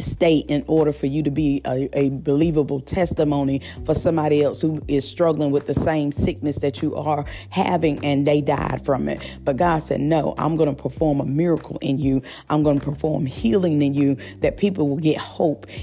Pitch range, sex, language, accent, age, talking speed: 135-165 Hz, female, English, American, 40-59, 205 wpm